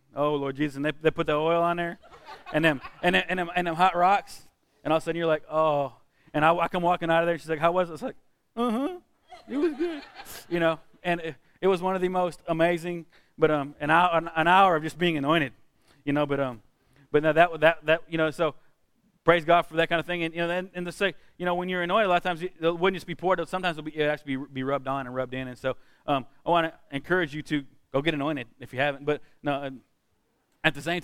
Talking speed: 275 wpm